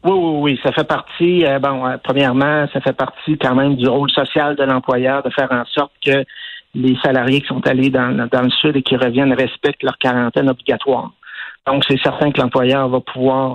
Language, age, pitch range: French, 60-79, 130-150 Hz